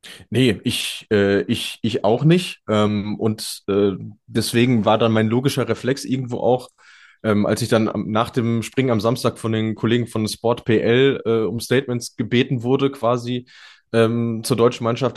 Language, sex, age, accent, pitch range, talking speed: German, male, 20-39, German, 105-130 Hz, 175 wpm